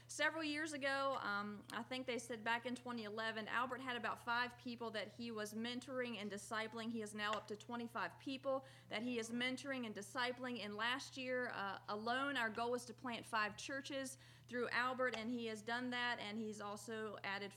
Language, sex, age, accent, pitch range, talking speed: English, female, 40-59, American, 210-255 Hz, 200 wpm